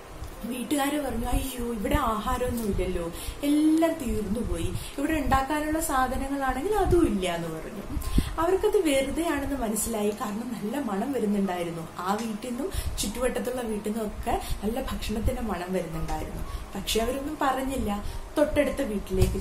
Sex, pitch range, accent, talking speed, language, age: female, 190-280 Hz, native, 110 wpm, Malayalam, 20-39